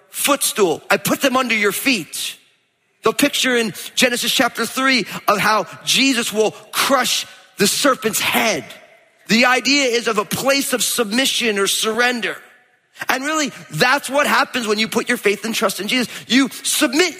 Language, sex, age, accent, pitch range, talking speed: English, male, 30-49, American, 205-265 Hz, 165 wpm